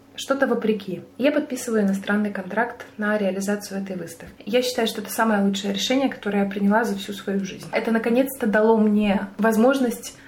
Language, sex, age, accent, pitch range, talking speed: Russian, female, 20-39, native, 200-250 Hz, 170 wpm